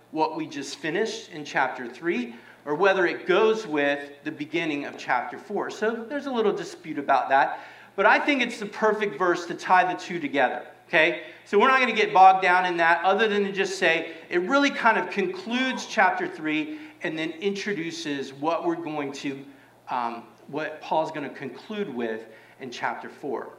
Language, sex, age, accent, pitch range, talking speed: English, male, 40-59, American, 140-200 Hz, 195 wpm